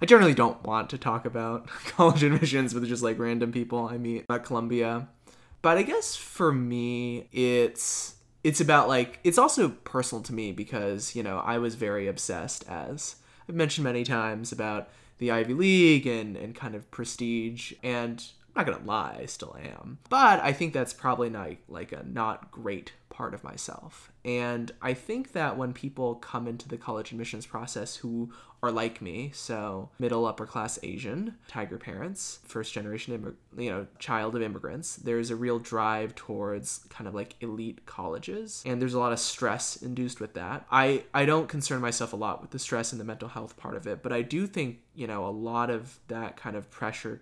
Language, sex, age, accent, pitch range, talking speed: English, male, 20-39, American, 115-130 Hz, 195 wpm